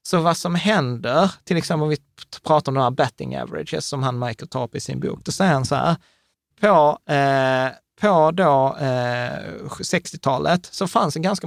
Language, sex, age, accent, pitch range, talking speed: Swedish, male, 30-49, native, 130-170 Hz, 195 wpm